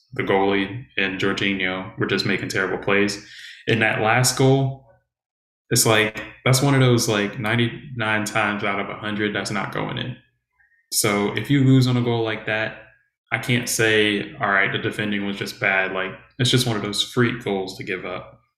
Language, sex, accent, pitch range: English, male, American, 100-115 Hz